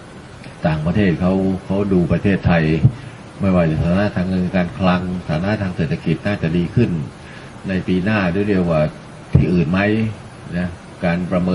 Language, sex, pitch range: Thai, male, 80-95 Hz